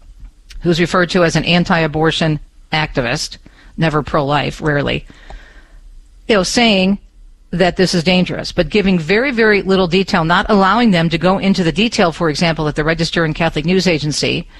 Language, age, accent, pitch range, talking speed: English, 50-69, American, 155-190 Hz, 170 wpm